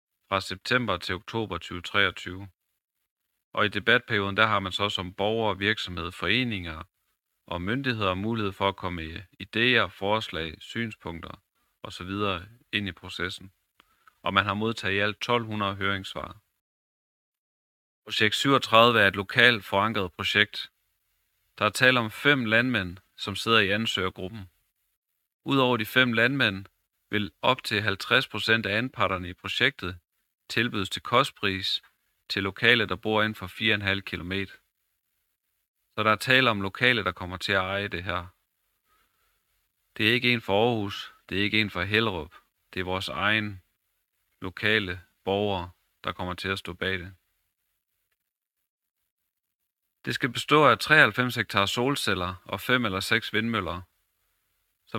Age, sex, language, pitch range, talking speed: 30-49, male, Danish, 95-110 Hz, 140 wpm